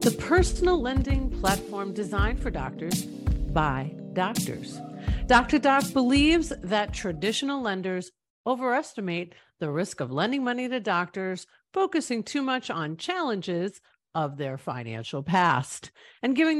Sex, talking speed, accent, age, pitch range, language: female, 125 wpm, American, 50-69, 165-270 Hz, English